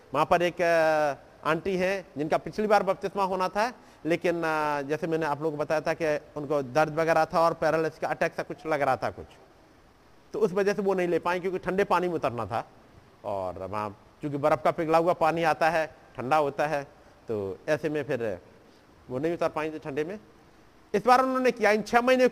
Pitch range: 145-195 Hz